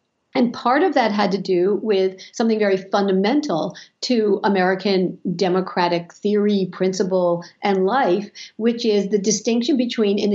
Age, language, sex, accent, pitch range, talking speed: 50-69, English, female, American, 185-225 Hz, 140 wpm